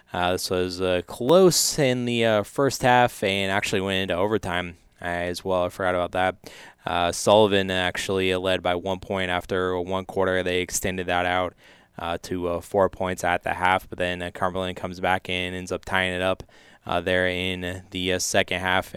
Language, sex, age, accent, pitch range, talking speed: English, male, 20-39, American, 90-95 Hz, 195 wpm